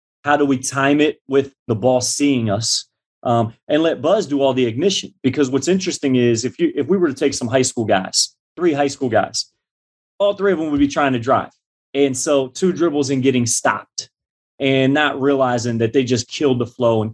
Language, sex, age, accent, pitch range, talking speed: English, male, 30-49, American, 120-150 Hz, 220 wpm